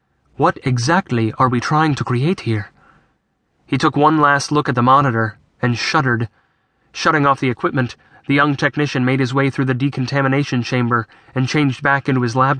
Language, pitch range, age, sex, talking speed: English, 125-150 Hz, 30-49, male, 180 wpm